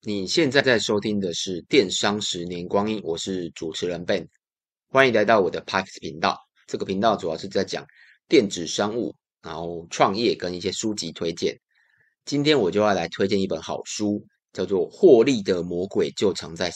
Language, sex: Chinese, male